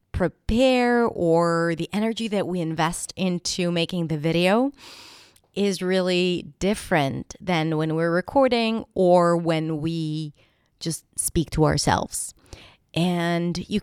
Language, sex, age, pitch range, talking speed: English, female, 20-39, 175-230 Hz, 115 wpm